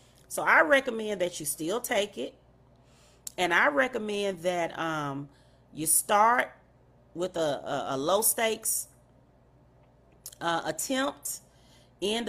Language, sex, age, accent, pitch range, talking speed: English, female, 40-59, American, 155-210 Hz, 110 wpm